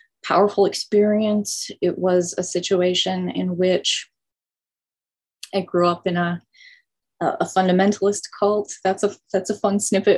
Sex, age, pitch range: female, 20-39, 180-210 Hz